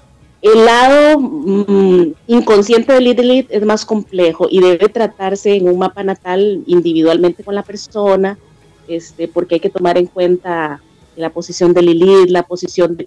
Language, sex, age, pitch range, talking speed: Spanish, female, 30-49, 175-225 Hz, 155 wpm